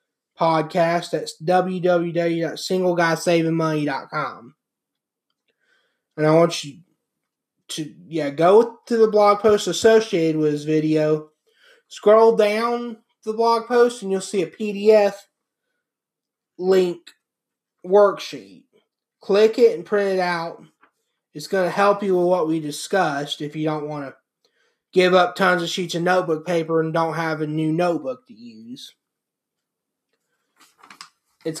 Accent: American